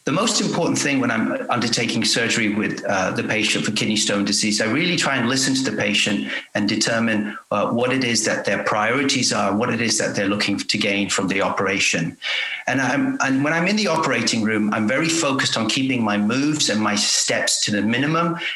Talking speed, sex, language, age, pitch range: 215 wpm, male, English, 40-59, 110-150 Hz